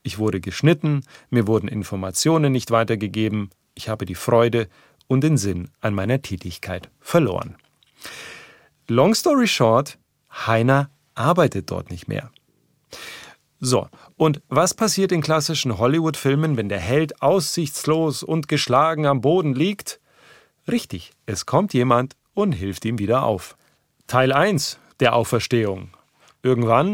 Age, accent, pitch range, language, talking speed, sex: 40-59, German, 110-155 Hz, German, 125 wpm, male